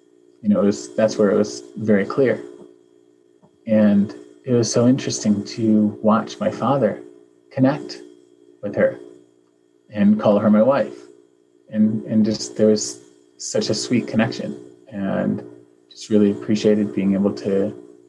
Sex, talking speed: male, 145 wpm